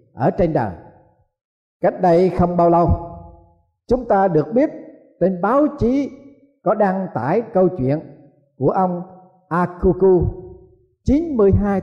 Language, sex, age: Vietnamese, male, 50-69